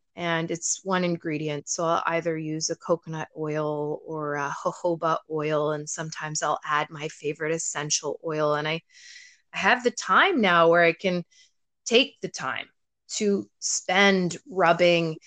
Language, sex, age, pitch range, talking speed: English, female, 20-39, 165-220 Hz, 155 wpm